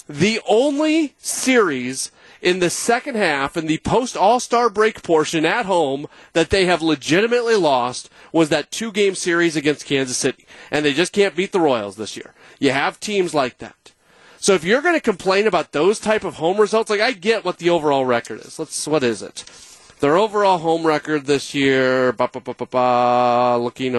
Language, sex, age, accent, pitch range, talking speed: English, male, 30-49, American, 130-190 Hz, 180 wpm